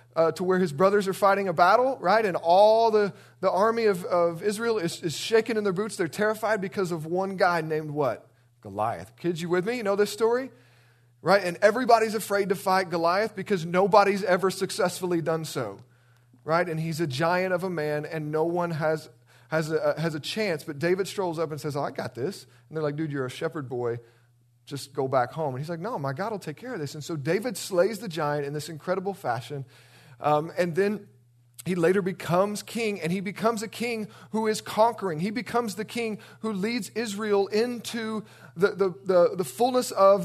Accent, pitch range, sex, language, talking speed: American, 160-205 Hz, male, English, 215 wpm